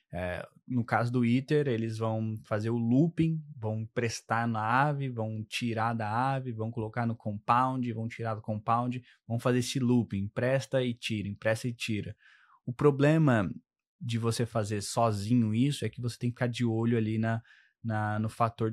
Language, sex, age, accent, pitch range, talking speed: Portuguese, male, 20-39, Brazilian, 110-125 Hz, 180 wpm